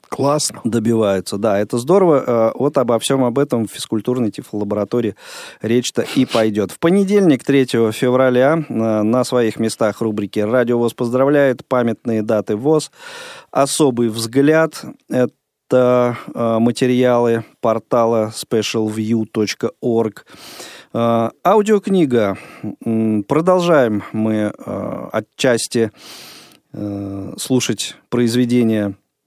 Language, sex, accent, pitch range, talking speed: Russian, male, native, 110-135 Hz, 85 wpm